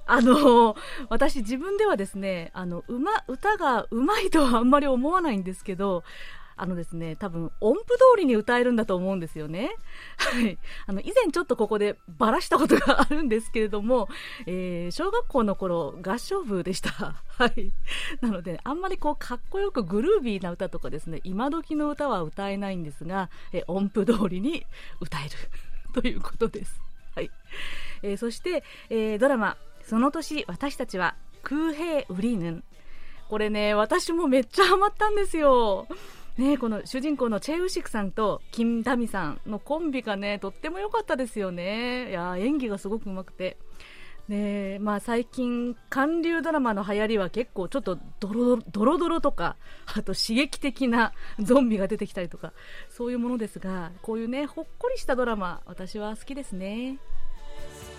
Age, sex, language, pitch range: 30-49, female, Japanese, 190-280 Hz